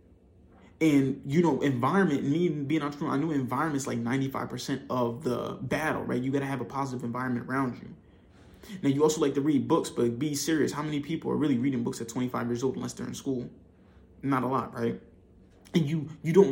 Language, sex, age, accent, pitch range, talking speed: English, male, 20-39, American, 125-155 Hz, 220 wpm